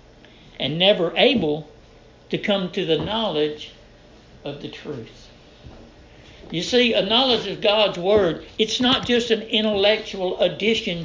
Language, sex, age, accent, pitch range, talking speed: English, male, 60-79, American, 145-205 Hz, 130 wpm